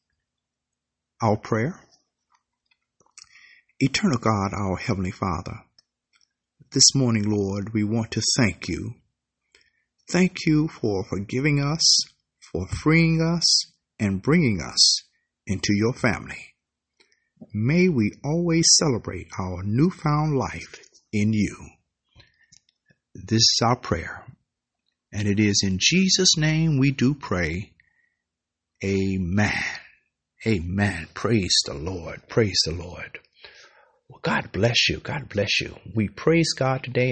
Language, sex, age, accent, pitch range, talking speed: English, male, 50-69, American, 100-155 Hz, 115 wpm